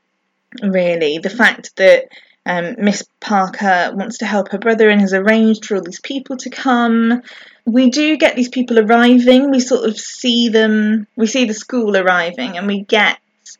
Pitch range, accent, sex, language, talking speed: 195-250 Hz, British, female, English, 175 wpm